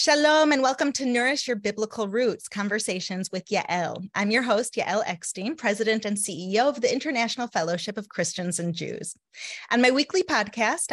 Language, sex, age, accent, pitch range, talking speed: English, female, 30-49, American, 190-240 Hz, 170 wpm